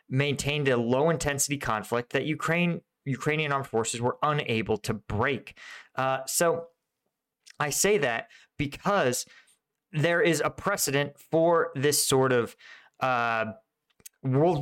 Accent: American